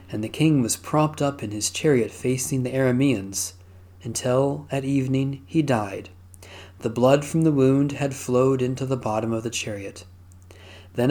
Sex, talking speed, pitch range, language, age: male, 165 wpm, 95-140 Hz, English, 40-59